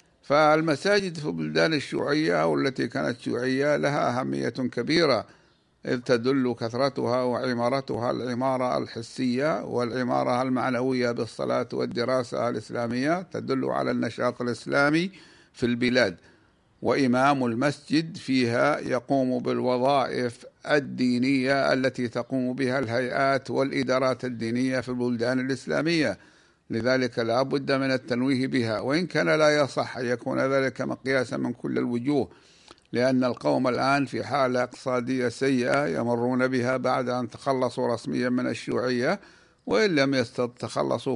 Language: Arabic